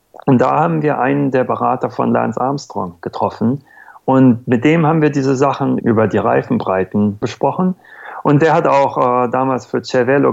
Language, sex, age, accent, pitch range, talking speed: German, male, 40-59, German, 115-145 Hz, 175 wpm